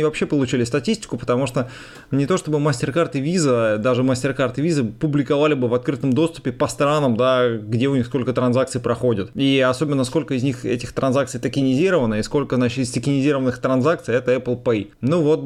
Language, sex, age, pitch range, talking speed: Russian, male, 20-39, 125-155 Hz, 185 wpm